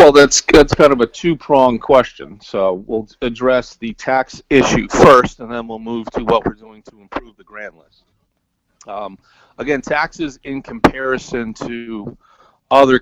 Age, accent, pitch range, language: 40-59, American, 105-125 Hz, English